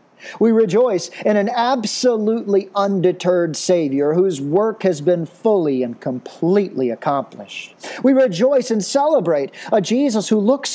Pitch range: 135-200 Hz